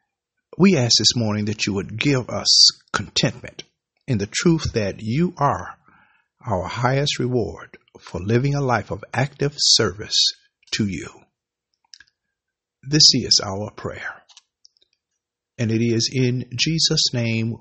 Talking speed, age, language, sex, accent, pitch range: 130 wpm, 50-69, English, male, American, 110-140 Hz